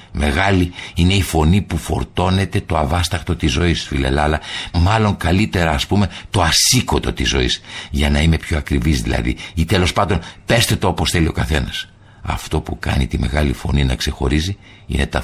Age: 60-79